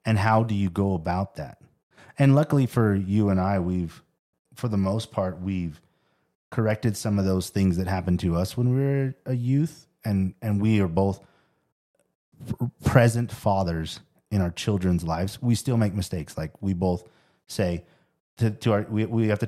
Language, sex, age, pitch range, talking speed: English, male, 30-49, 90-115 Hz, 180 wpm